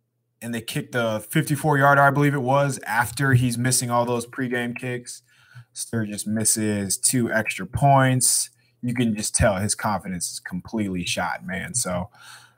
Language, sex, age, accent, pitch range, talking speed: English, male, 20-39, American, 110-130 Hz, 155 wpm